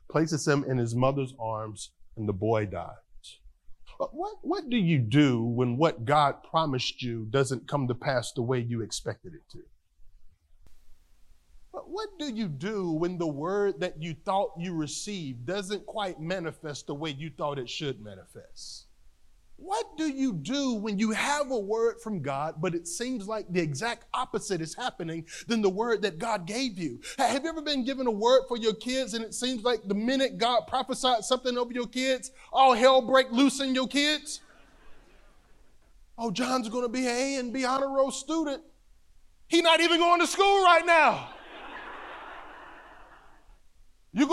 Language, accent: English, American